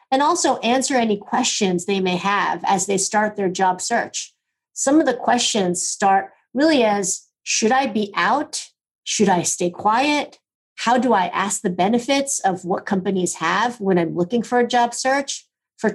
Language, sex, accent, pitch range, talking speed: English, female, American, 190-240 Hz, 175 wpm